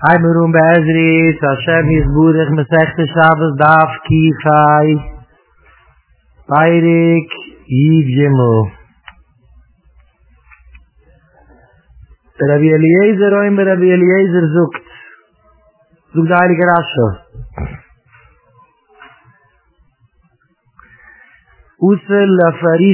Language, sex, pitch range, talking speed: English, male, 110-170 Hz, 35 wpm